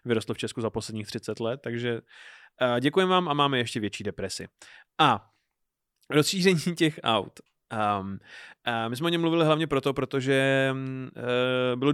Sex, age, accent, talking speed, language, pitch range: male, 30-49, native, 140 wpm, Czech, 110-145 Hz